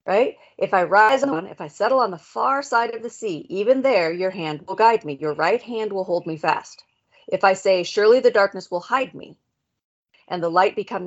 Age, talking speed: 40-59, 230 wpm